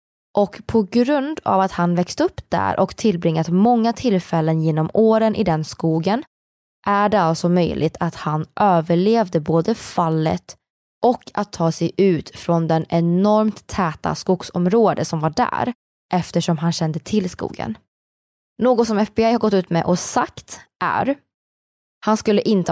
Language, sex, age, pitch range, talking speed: Swedish, female, 20-39, 165-215 Hz, 155 wpm